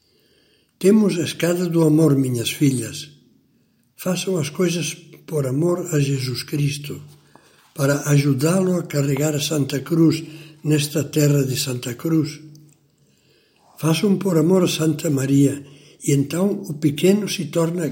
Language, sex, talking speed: Portuguese, male, 130 wpm